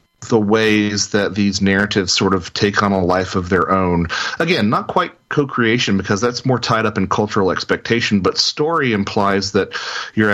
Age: 40-59